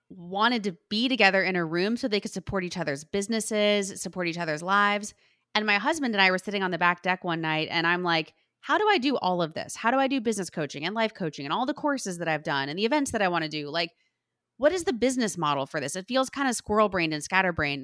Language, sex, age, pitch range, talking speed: English, female, 20-39, 170-220 Hz, 270 wpm